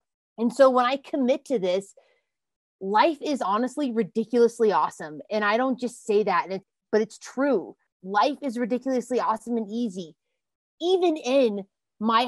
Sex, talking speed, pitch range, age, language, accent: female, 155 wpm, 205-245 Hz, 20-39, English, American